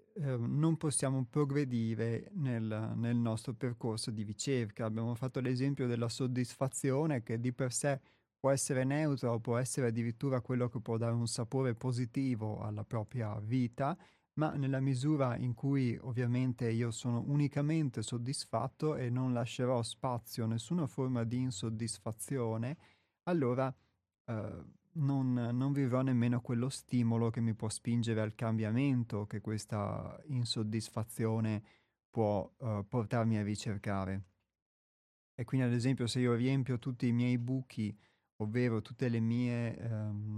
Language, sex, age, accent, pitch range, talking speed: Italian, male, 30-49, native, 115-130 Hz, 140 wpm